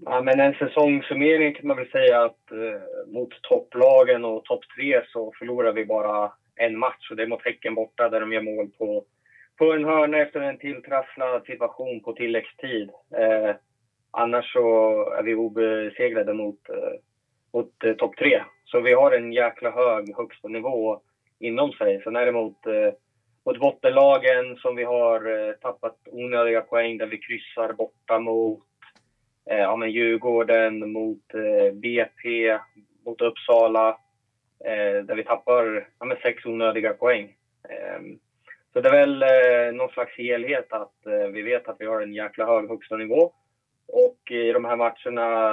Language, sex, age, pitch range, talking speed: Swedish, male, 20-39, 110-155 Hz, 160 wpm